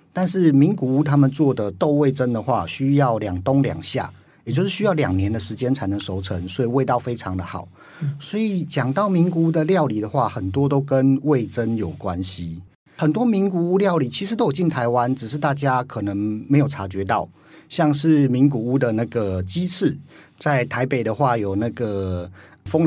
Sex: male